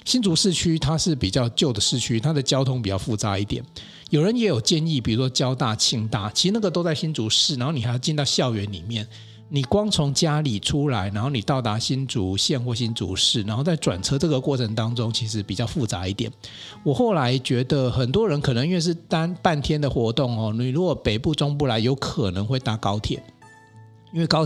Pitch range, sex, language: 110-150 Hz, male, Chinese